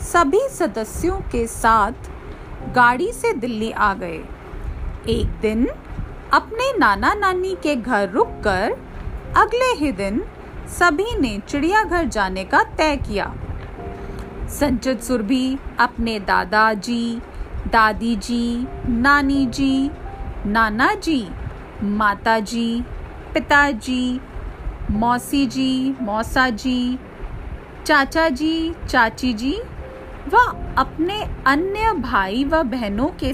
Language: Hindi